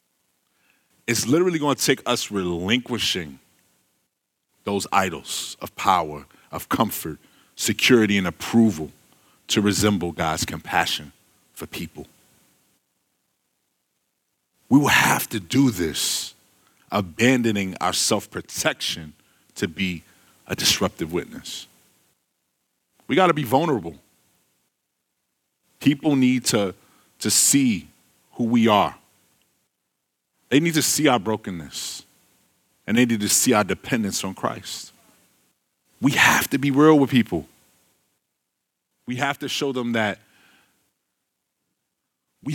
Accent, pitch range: American, 75-125 Hz